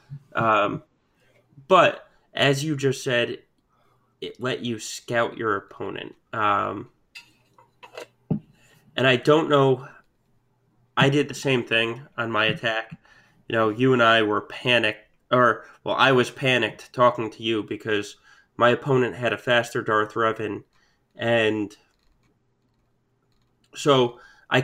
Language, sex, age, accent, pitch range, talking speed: English, male, 20-39, American, 110-130 Hz, 125 wpm